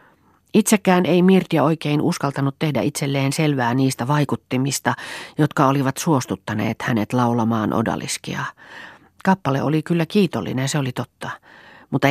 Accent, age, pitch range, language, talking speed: native, 40-59, 115-150 Hz, Finnish, 120 wpm